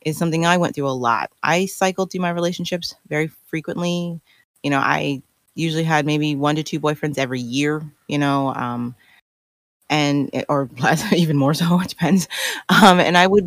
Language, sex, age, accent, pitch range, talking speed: English, female, 30-49, American, 145-190 Hz, 180 wpm